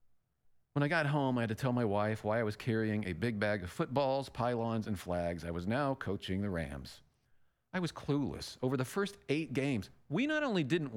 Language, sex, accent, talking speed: English, male, American, 220 wpm